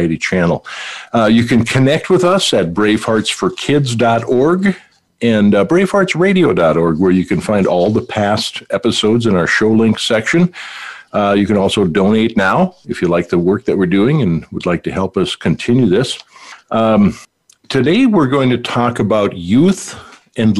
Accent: American